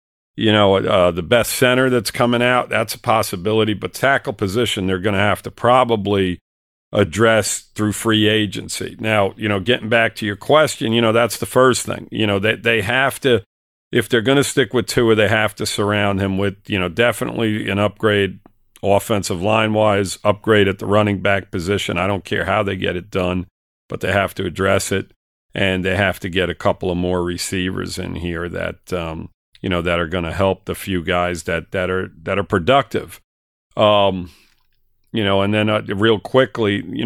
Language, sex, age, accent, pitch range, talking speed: English, male, 50-69, American, 95-115 Hz, 200 wpm